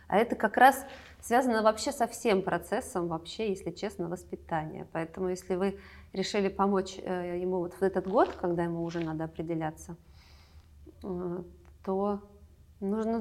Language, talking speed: Russian, 135 wpm